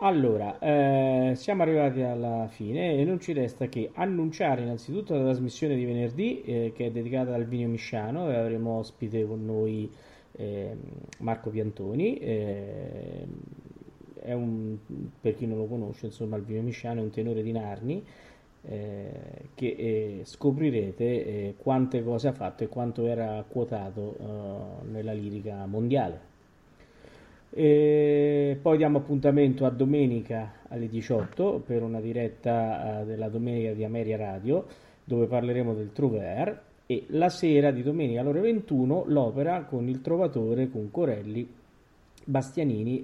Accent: native